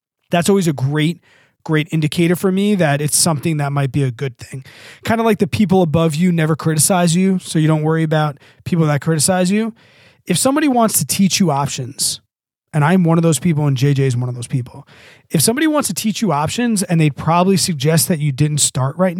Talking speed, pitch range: 230 wpm, 140-180 Hz